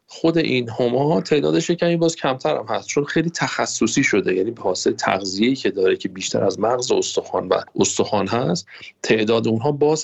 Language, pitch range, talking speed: Persian, 105-170 Hz, 190 wpm